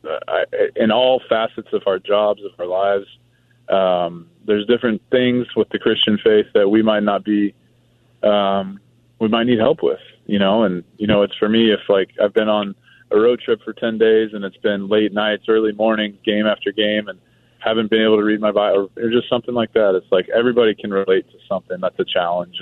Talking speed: 210 wpm